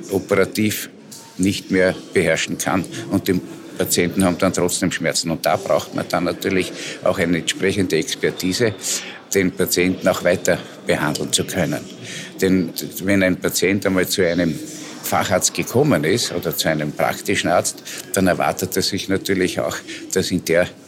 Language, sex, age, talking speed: German, male, 50-69, 150 wpm